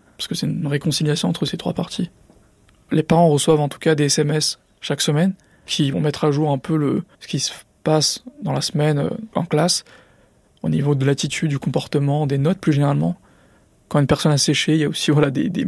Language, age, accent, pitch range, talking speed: French, 20-39, French, 140-170 Hz, 220 wpm